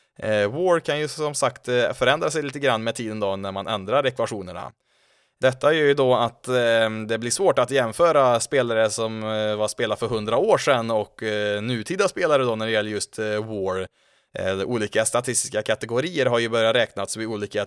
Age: 20-39